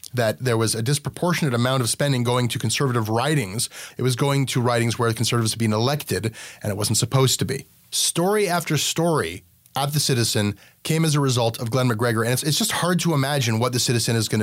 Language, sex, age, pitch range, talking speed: English, male, 30-49, 120-150 Hz, 220 wpm